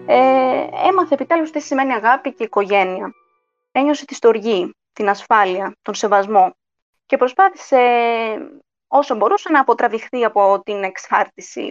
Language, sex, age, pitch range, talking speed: Greek, female, 20-39, 200-290 Hz, 125 wpm